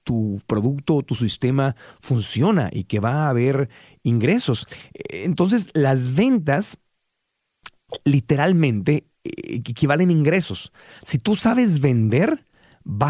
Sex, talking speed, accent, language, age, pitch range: male, 110 wpm, Mexican, Spanish, 40-59, 110-160 Hz